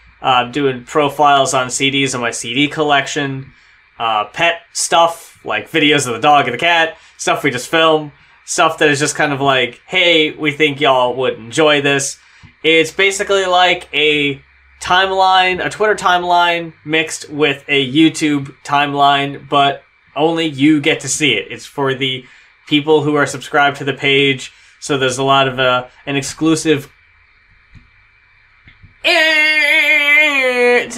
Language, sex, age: English, male, 20-39